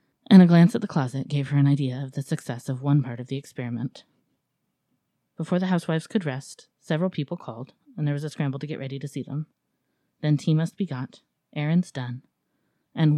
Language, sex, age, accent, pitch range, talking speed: English, female, 30-49, American, 135-165 Hz, 210 wpm